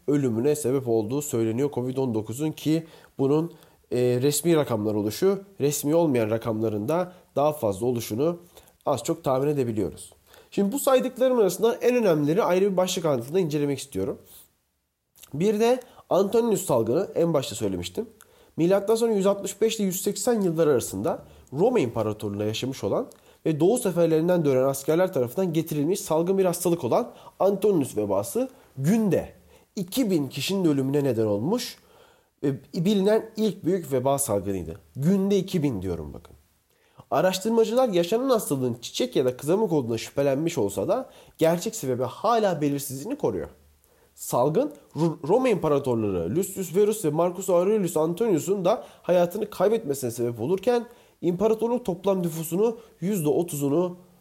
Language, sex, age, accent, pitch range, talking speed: Turkish, male, 30-49, native, 130-195 Hz, 125 wpm